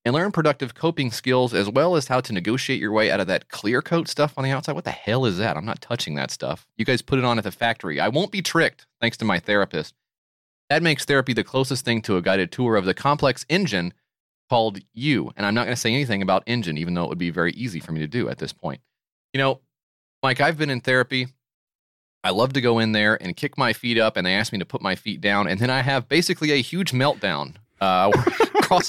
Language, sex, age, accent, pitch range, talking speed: English, male, 30-49, American, 105-145 Hz, 260 wpm